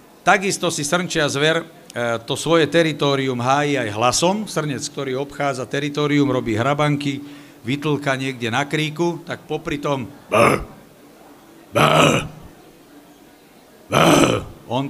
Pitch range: 140-160 Hz